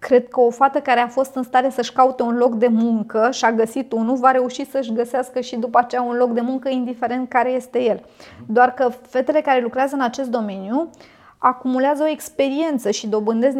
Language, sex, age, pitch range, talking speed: Romanian, female, 20-39, 230-275 Hz, 205 wpm